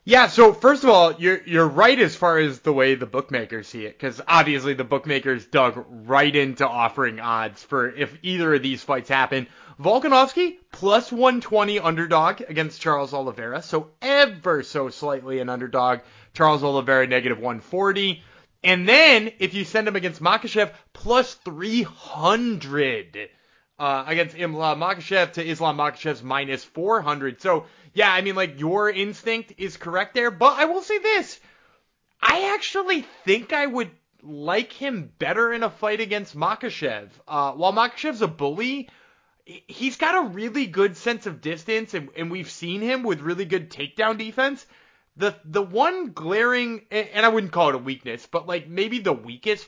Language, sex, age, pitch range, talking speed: English, male, 30-49, 145-225 Hz, 160 wpm